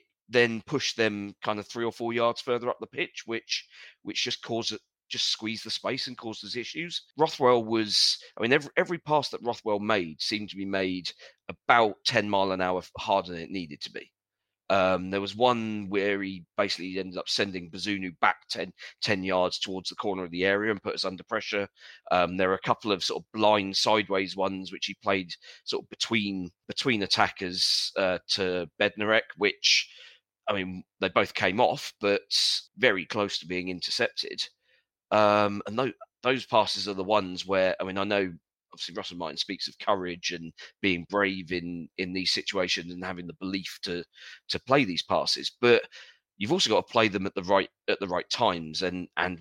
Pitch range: 90-110 Hz